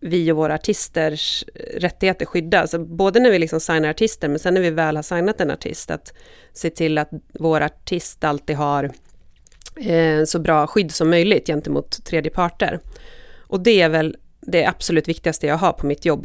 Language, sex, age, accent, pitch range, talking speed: Swedish, female, 30-49, native, 155-190 Hz, 180 wpm